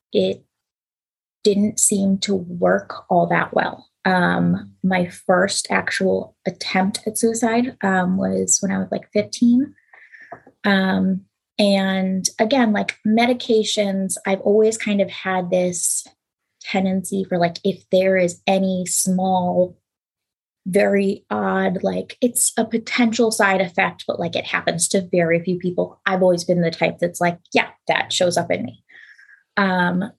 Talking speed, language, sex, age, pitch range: 140 wpm, English, female, 20-39, 180-210 Hz